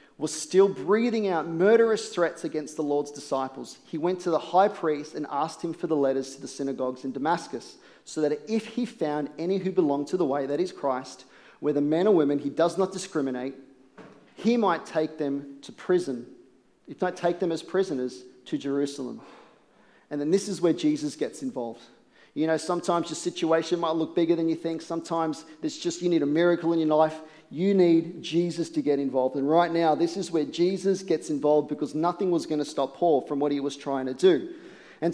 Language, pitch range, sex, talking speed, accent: English, 145-185 Hz, male, 210 wpm, Australian